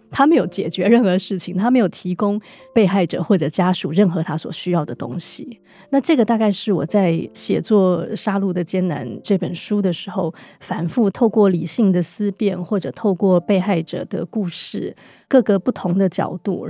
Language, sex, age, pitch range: Chinese, female, 30-49, 180-210 Hz